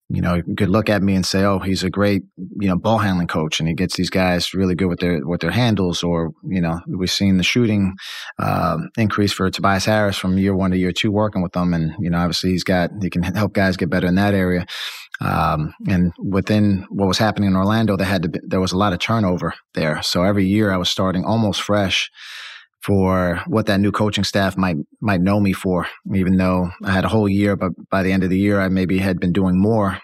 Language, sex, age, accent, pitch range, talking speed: English, male, 30-49, American, 90-100 Hz, 250 wpm